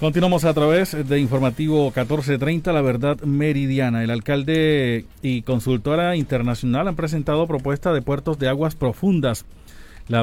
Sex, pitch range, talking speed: male, 120-155 Hz, 135 wpm